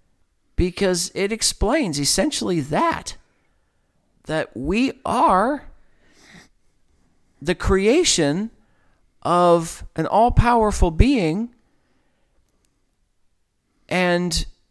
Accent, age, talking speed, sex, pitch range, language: American, 40-59, 60 wpm, male, 115-195 Hz, English